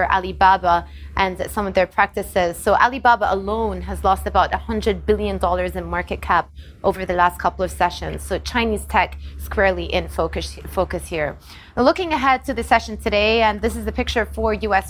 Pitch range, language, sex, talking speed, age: 185-235 Hz, English, female, 180 wpm, 20-39